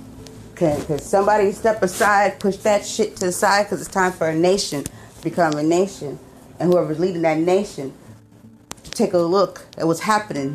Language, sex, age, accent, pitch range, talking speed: English, female, 40-59, American, 120-185 Hz, 180 wpm